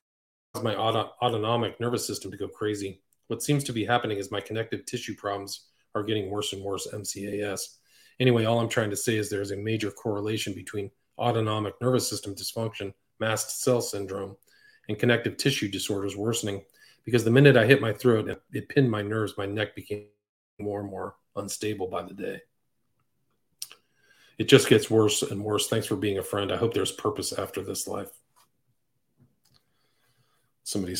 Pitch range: 100-125 Hz